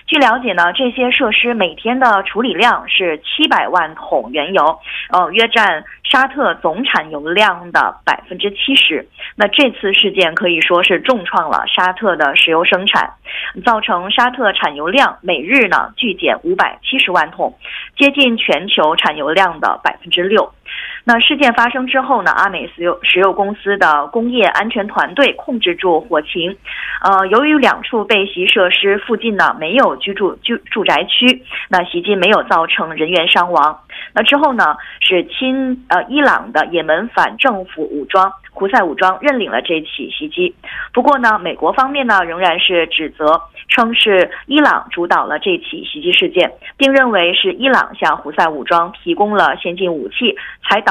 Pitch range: 180-260 Hz